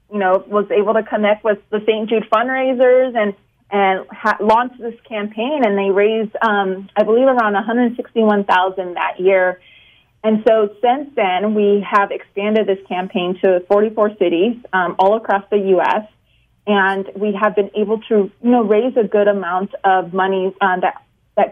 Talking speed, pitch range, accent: 170 wpm, 190-220 Hz, American